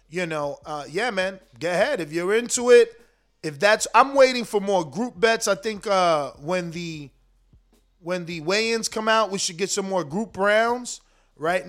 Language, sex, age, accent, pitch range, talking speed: English, male, 20-39, American, 160-195 Hz, 190 wpm